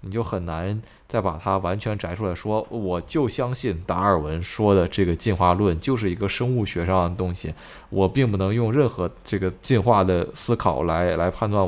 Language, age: Chinese, 20-39